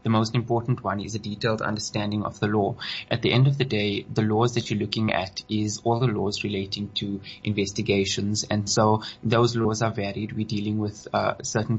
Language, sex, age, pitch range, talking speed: English, male, 20-39, 105-120 Hz, 210 wpm